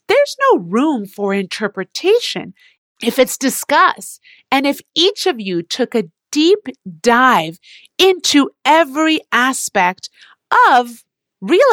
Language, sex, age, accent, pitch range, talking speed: English, female, 40-59, American, 205-300 Hz, 115 wpm